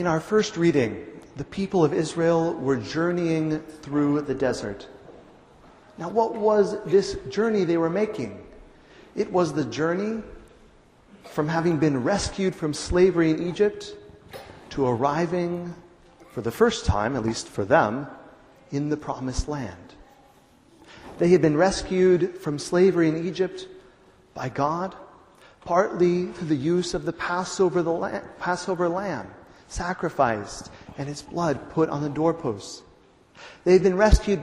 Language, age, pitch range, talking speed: English, 40-59, 145-190 Hz, 135 wpm